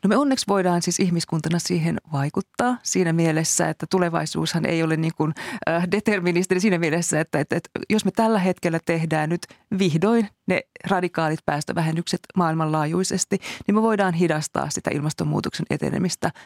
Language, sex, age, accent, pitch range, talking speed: Finnish, female, 30-49, native, 155-185 Hz, 145 wpm